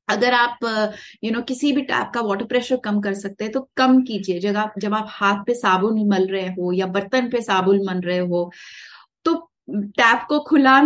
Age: 30-49